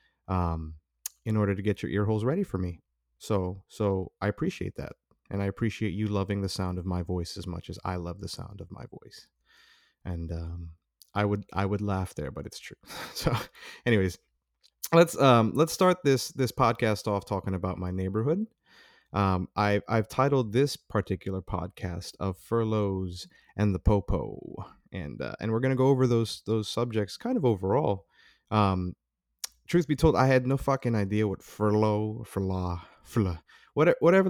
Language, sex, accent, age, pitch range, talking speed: English, male, American, 30-49, 95-120 Hz, 175 wpm